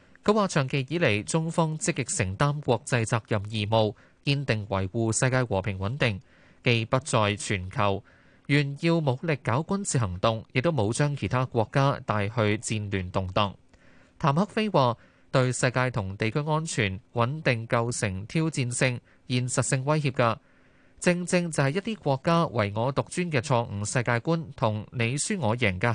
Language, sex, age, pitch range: Chinese, male, 20-39, 110-145 Hz